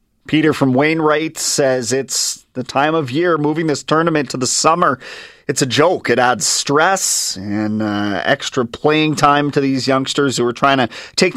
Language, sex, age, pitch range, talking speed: English, male, 30-49, 125-165 Hz, 180 wpm